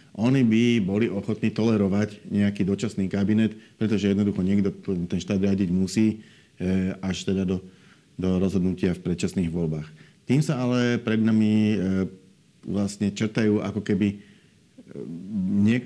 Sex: male